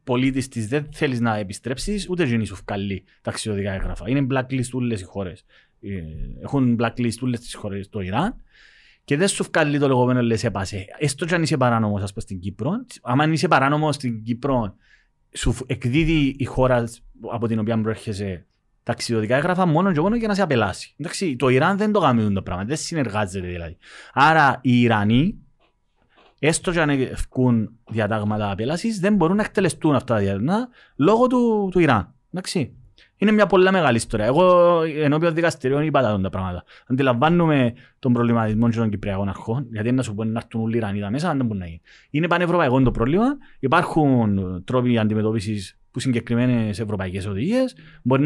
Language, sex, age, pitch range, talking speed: Greek, male, 30-49, 110-150 Hz, 150 wpm